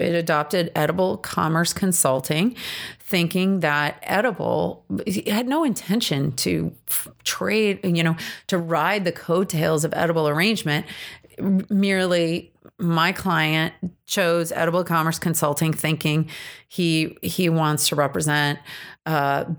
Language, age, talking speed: English, 30-49, 110 wpm